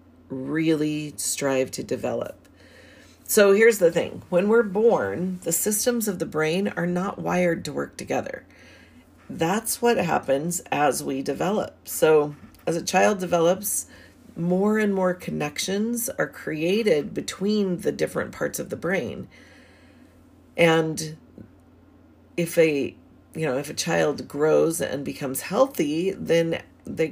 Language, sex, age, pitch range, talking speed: English, female, 40-59, 130-185 Hz, 135 wpm